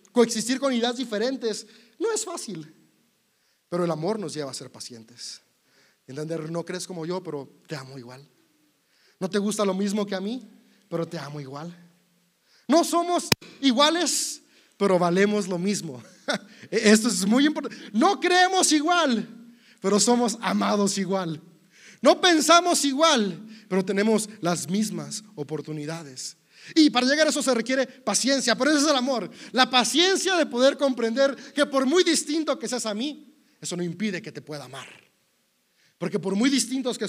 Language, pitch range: Spanish, 180-265 Hz